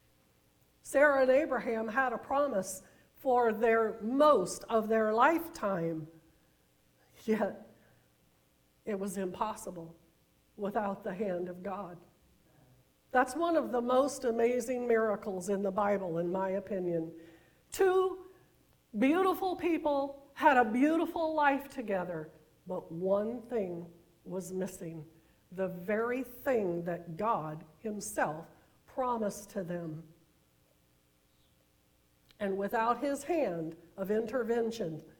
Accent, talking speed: American, 105 wpm